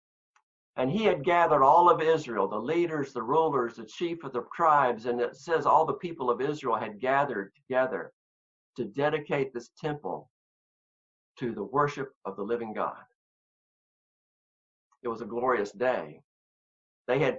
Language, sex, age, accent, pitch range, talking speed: English, male, 50-69, American, 115-155 Hz, 155 wpm